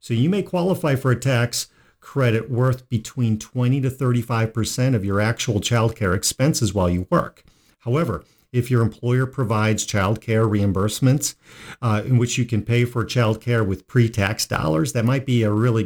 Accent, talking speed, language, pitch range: American, 165 wpm, English, 105-130 Hz